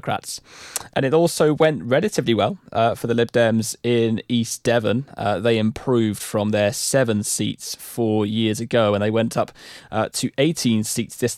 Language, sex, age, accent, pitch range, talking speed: English, male, 20-39, British, 110-130 Hz, 175 wpm